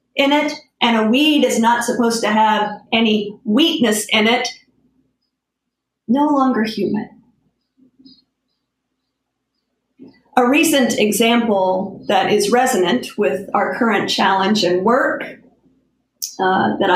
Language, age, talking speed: English, 40-59, 110 wpm